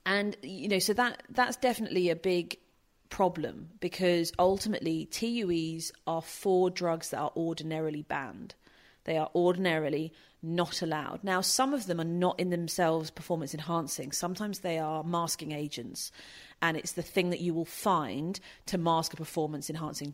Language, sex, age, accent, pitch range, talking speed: English, female, 30-49, British, 160-185 Hz, 160 wpm